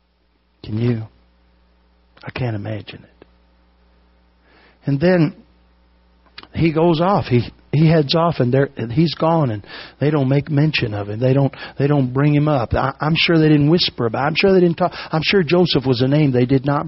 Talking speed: 190 wpm